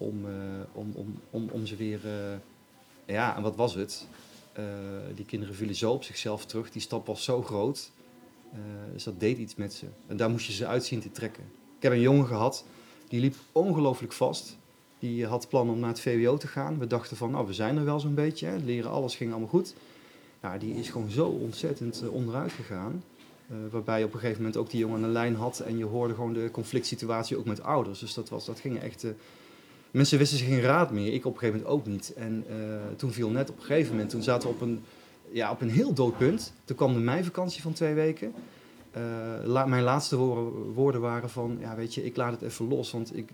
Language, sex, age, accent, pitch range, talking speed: Dutch, male, 30-49, Dutch, 110-135 Hz, 225 wpm